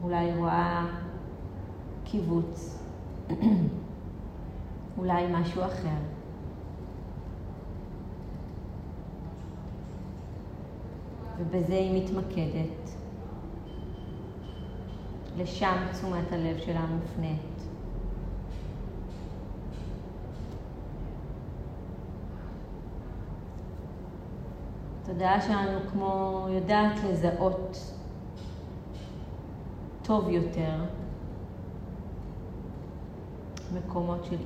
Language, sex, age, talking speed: Hebrew, female, 30-49, 40 wpm